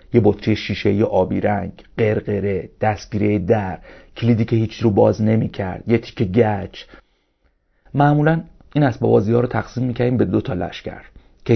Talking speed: 160 wpm